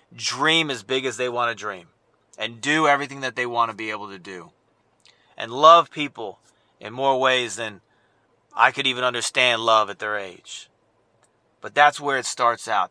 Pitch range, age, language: 120-165 Hz, 30-49, English